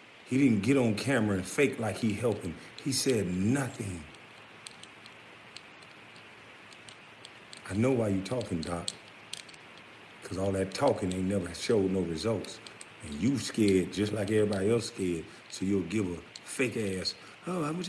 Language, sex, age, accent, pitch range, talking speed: English, male, 50-69, American, 85-105 Hz, 155 wpm